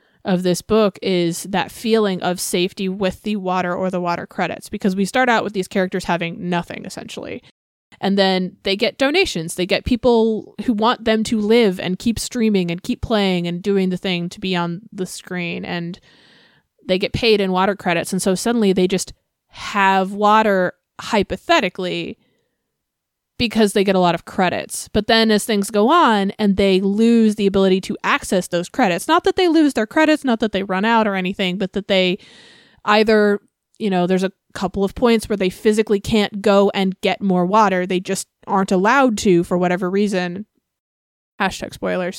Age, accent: 20-39, American